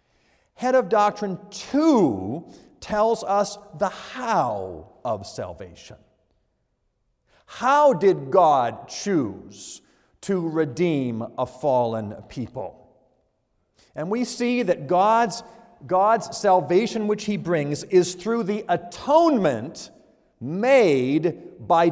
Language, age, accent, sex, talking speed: English, 50-69, American, male, 95 wpm